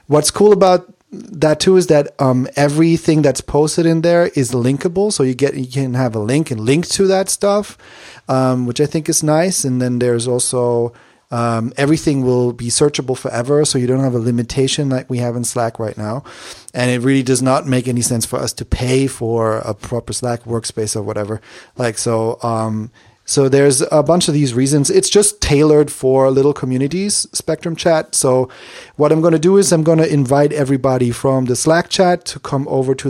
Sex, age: male, 30-49